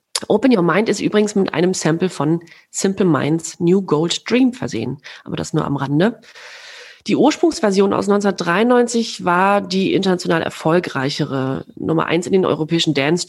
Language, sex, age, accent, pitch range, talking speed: German, female, 30-49, German, 165-225 Hz, 155 wpm